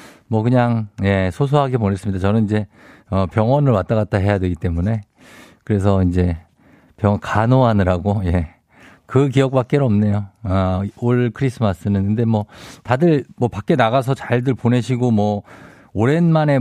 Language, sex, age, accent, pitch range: Korean, male, 50-69, native, 100-135 Hz